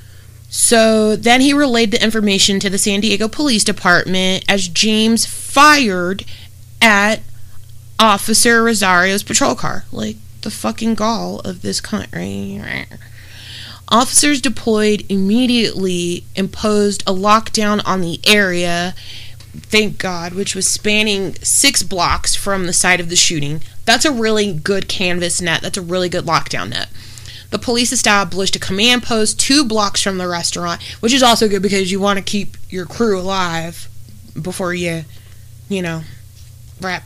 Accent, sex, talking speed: American, female, 145 wpm